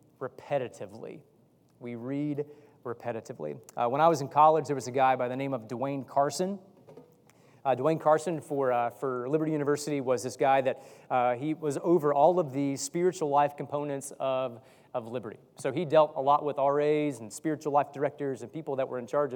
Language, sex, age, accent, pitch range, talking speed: English, male, 30-49, American, 135-155 Hz, 190 wpm